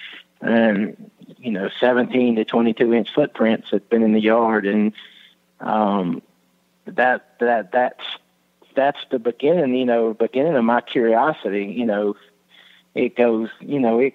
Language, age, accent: English, 40-59, American